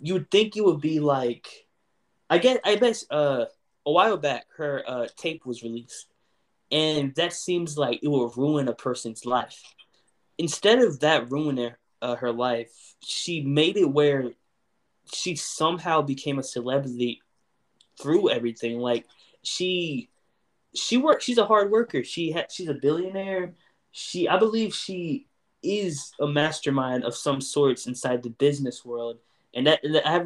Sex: male